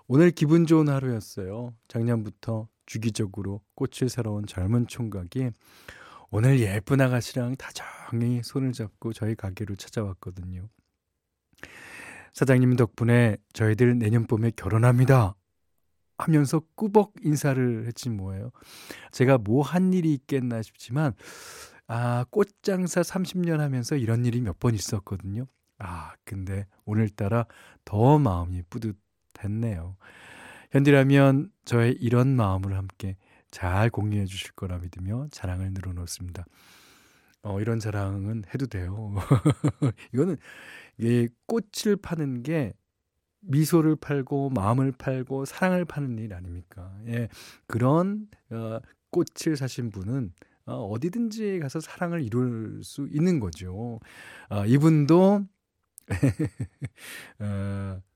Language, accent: Korean, native